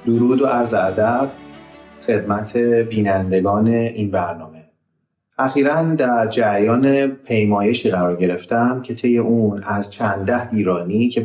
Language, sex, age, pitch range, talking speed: Persian, male, 30-49, 100-125 Hz, 110 wpm